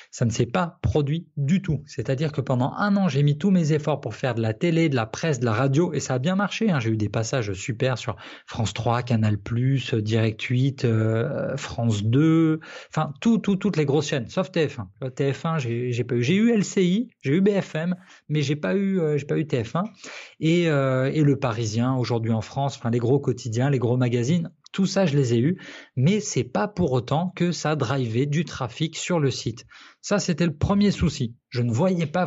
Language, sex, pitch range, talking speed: French, male, 125-170 Hz, 225 wpm